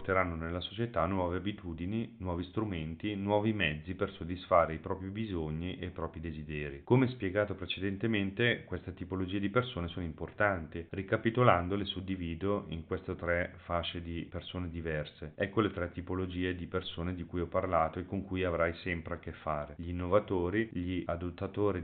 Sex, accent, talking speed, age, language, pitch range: male, native, 160 wpm, 40-59, Italian, 85-100 Hz